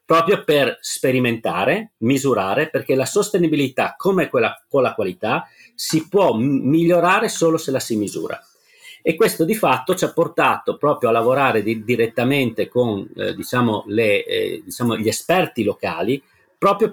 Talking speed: 150 wpm